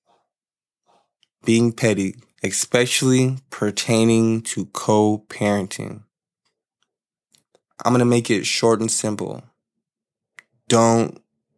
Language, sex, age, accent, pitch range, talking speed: English, male, 20-39, American, 105-120 Hz, 80 wpm